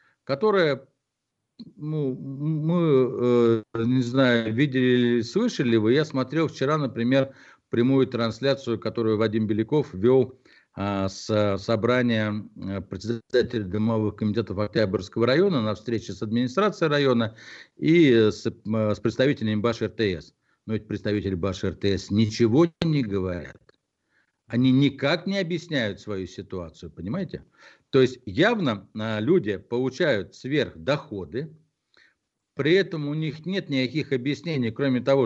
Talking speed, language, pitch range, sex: 110 wpm, Russian, 110-150 Hz, male